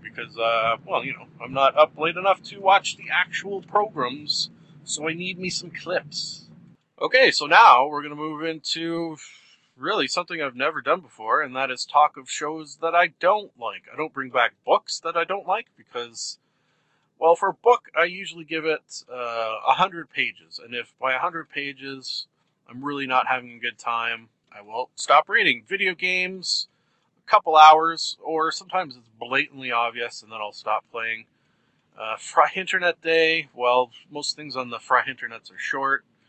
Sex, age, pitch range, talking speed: male, 30-49, 125-170 Hz, 180 wpm